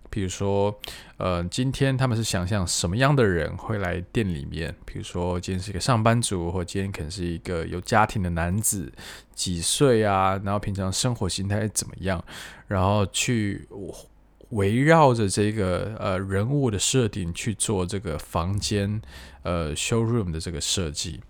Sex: male